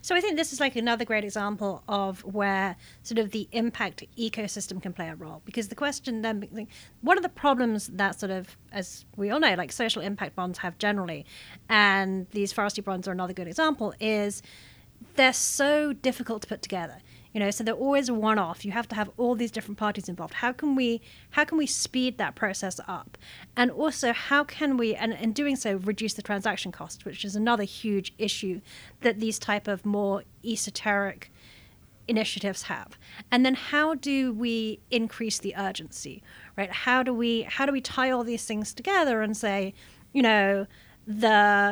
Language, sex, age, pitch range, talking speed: English, female, 30-49, 200-245 Hz, 190 wpm